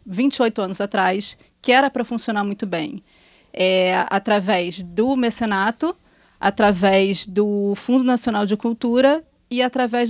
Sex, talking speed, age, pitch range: female, 120 wpm, 20-39, 200-255 Hz